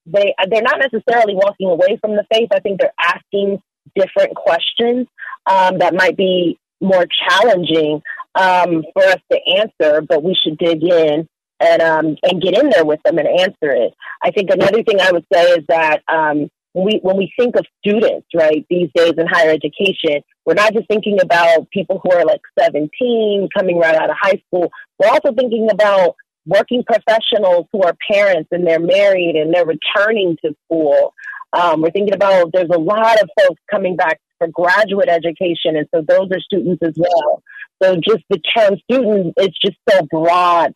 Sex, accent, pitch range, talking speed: female, American, 170-220 Hz, 190 wpm